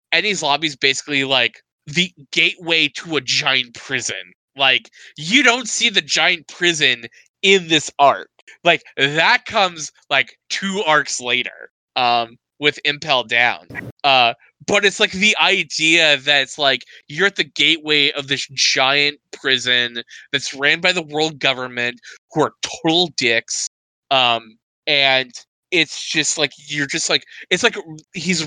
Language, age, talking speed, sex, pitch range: English, 20-39, 150 wpm, male, 135-180 Hz